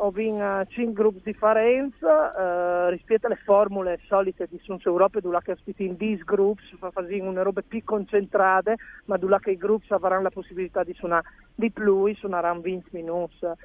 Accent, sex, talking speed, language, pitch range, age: native, male, 170 wpm, Italian, 180-210 Hz, 40-59